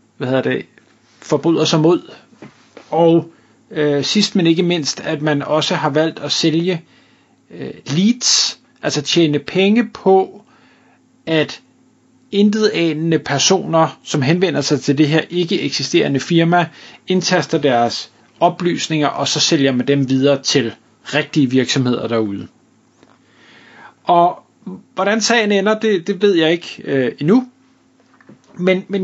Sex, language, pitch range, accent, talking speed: male, Danish, 150-195 Hz, native, 125 wpm